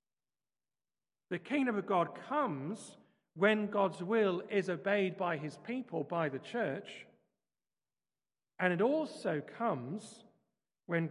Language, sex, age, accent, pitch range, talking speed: English, male, 40-59, British, 155-210 Hz, 115 wpm